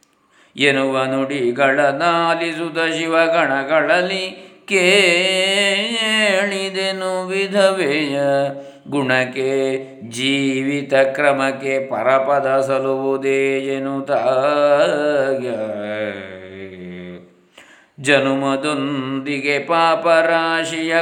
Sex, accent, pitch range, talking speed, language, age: male, native, 135-185 Hz, 45 wpm, Kannada, 50-69